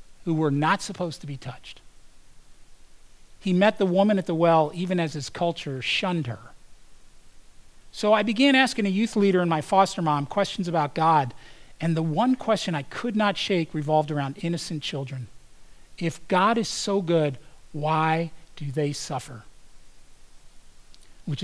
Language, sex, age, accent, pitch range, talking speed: English, male, 40-59, American, 150-200 Hz, 155 wpm